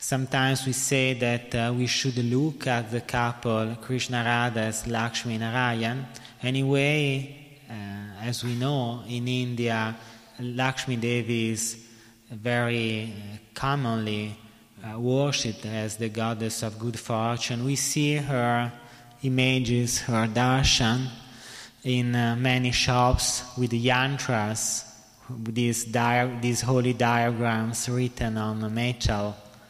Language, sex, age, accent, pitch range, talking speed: Italian, male, 30-49, native, 115-125 Hz, 115 wpm